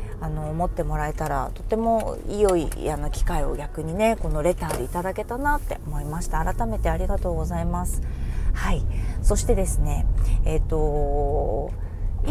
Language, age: Japanese, 20-39